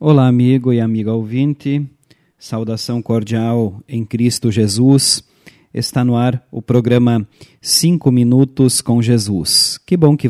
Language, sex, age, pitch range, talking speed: Portuguese, male, 40-59, 120-145 Hz, 130 wpm